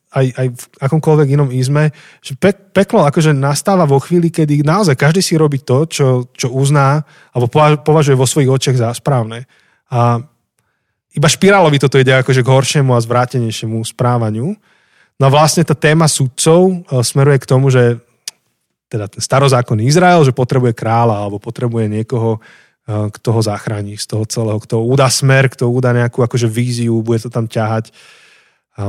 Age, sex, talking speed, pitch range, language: 20-39, male, 160 wpm, 120-150 Hz, Slovak